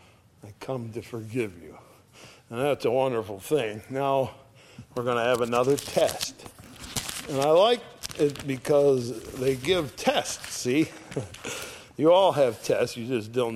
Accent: American